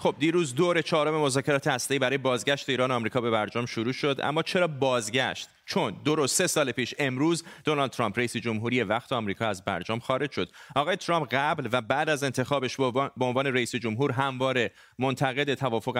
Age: 30-49